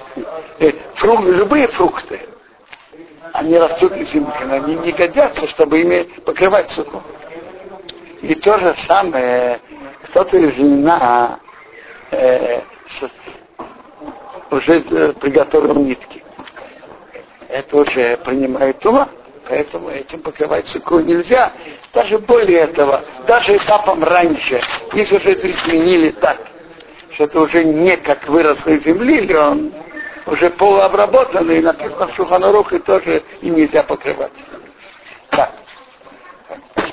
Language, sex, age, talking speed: Russian, male, 60-79, 100 wpm